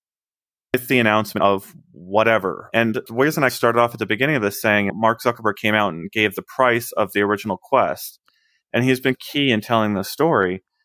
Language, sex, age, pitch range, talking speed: English, male, 30-49, 105-140 Hz, 200 wpm